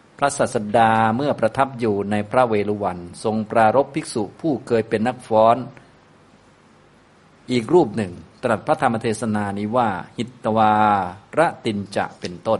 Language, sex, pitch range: Thai, male, 100-120 Hz